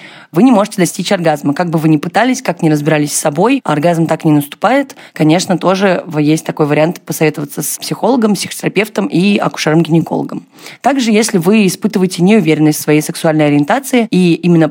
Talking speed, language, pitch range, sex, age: 165 wpm, Russian, 155-190 Hz, female, 20-39